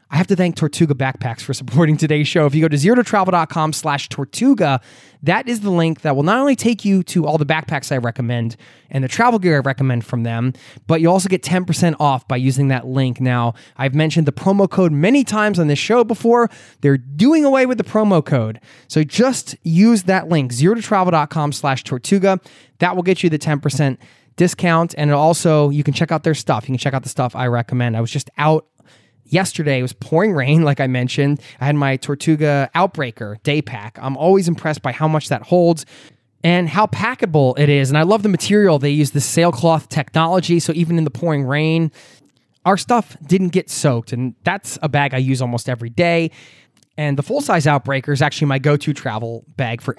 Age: 20-39